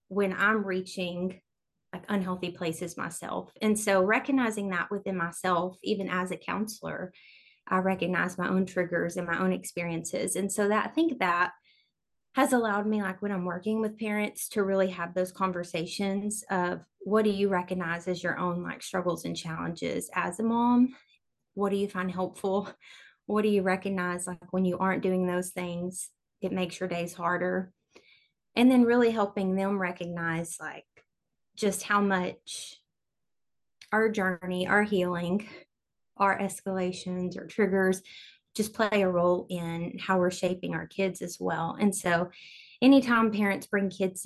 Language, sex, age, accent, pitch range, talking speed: English, female, 20-39, American, 180-205 Hz, 160 wpm